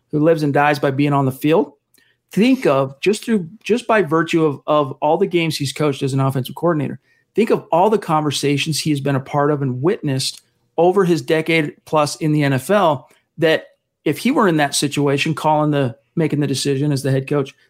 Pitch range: 145-170 Hz